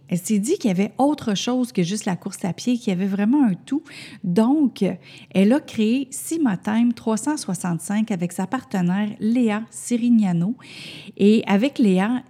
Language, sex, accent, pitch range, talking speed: French, female, Canadian, 185-240 Hz, 170 wpm